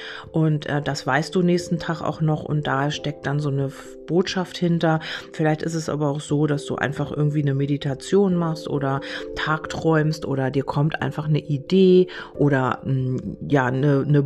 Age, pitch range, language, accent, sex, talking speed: 40-59, 140-165 Hz, German, German, female, 175 wpm